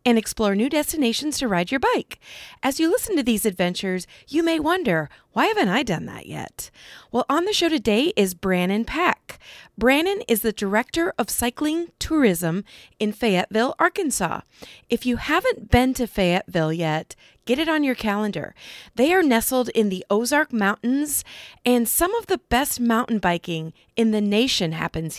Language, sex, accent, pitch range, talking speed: English, female, American, 205-285 Hz, 170 wpm